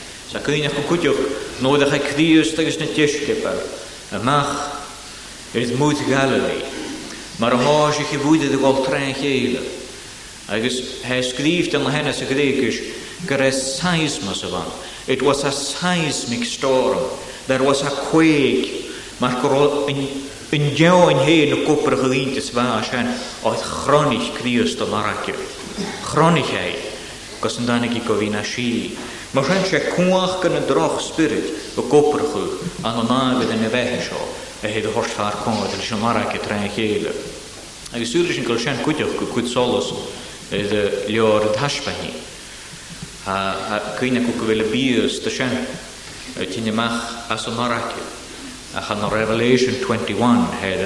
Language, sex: English, male